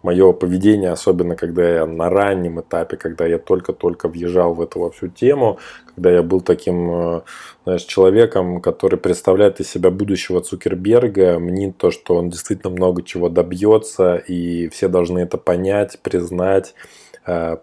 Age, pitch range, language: 20-39, 85-100 Hz, Russian